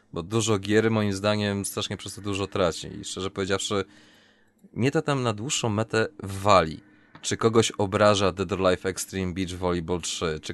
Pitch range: 95-115 Hz